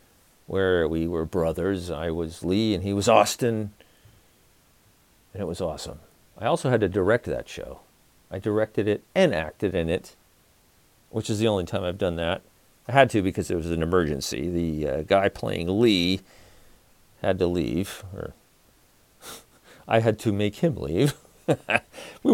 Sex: male